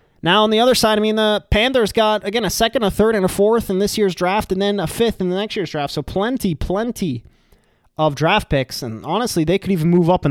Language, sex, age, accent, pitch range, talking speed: English, male, 20-39, American, 150-215 Hz, 260 wpm